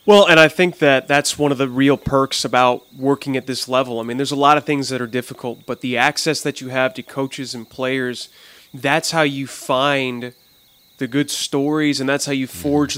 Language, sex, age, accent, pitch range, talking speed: English, male, 30-49, American, 130-150 Hz, 220 wpm